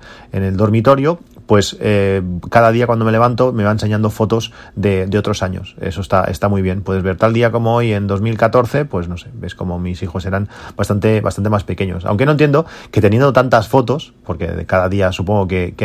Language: Spanish